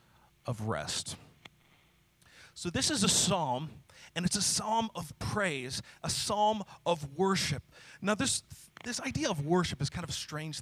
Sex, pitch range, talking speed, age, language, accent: male, 155-215 Hz, 160 wpm, 30-49, English, American